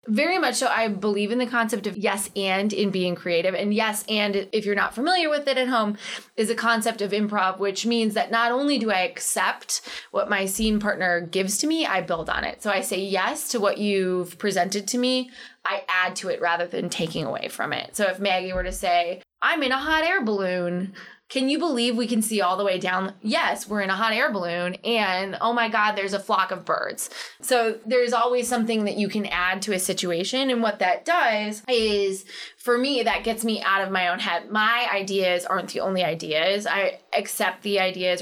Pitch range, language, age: 185-235 Hz, English, 20-39